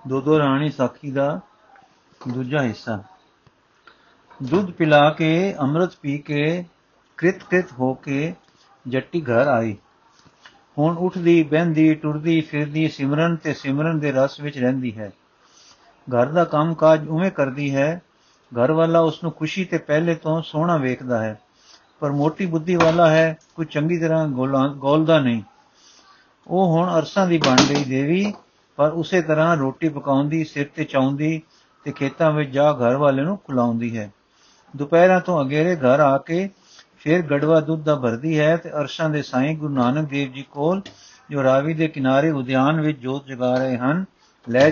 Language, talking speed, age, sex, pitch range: Punjabi, 155 wpm, 50-69, male, 135-165 Hz